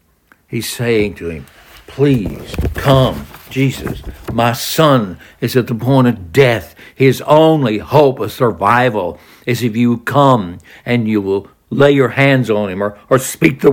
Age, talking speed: 60-79, 155 wpm